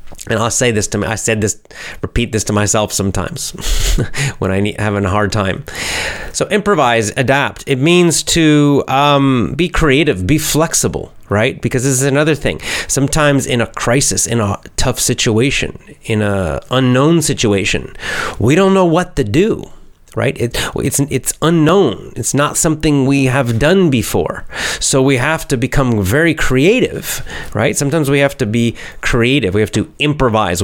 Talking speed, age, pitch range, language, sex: 165 wpm, 30-49, 110-145 Hz, English, male